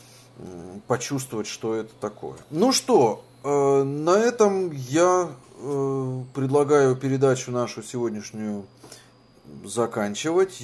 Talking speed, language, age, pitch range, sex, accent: 80 wpm, Russian, 20-39, 105-130 Hz, male, native